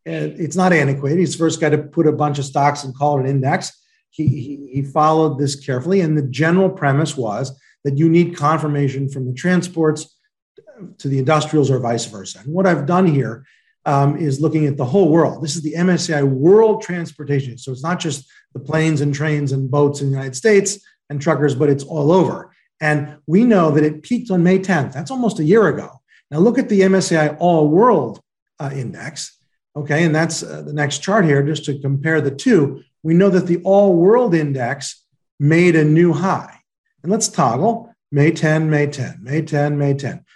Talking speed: 200 wpm